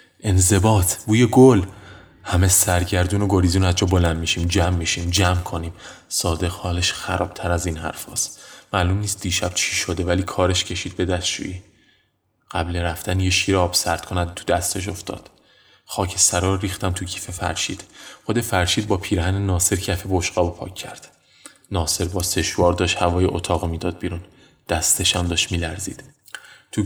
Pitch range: 90-100 Hz